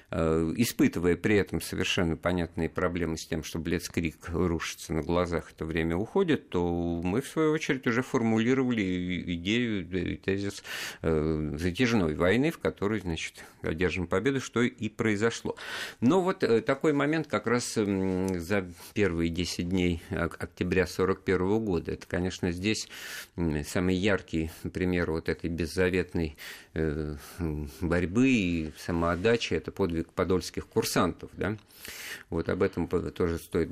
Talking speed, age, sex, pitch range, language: 125 wpm, 50-69, male, 80-100 Hz, Russian